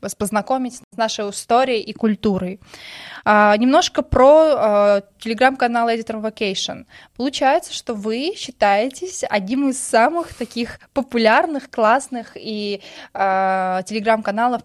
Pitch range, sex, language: 200-235 Hz, female, Russian